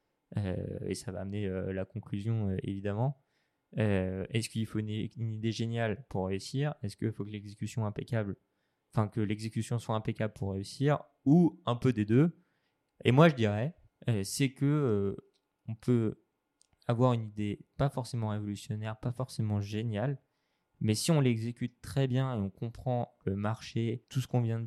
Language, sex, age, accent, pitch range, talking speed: French, male, 20-39, French, 105-130 Hz, 175 wpm